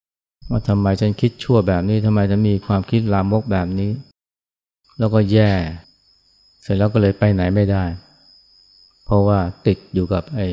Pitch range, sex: 95-110 Hz, male